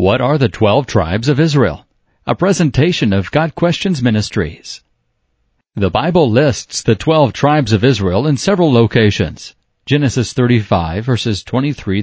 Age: 50-69